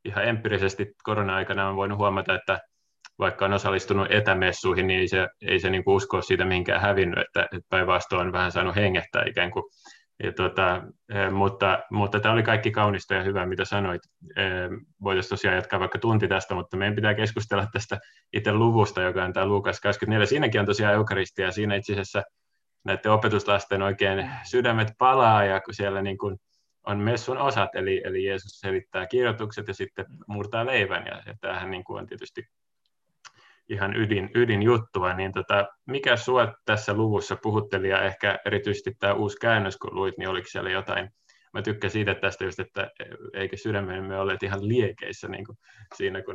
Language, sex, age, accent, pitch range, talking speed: Finnish, male, 20-39, native, 95-110 Hz, 165 wpm